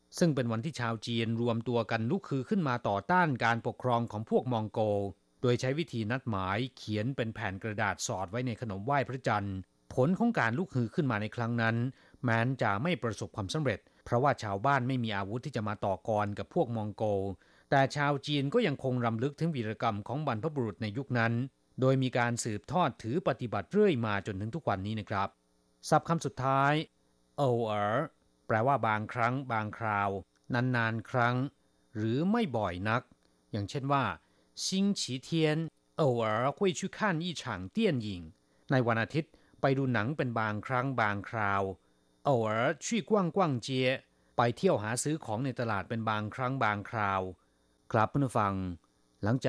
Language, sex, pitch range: Thai, male, 100-135 Hz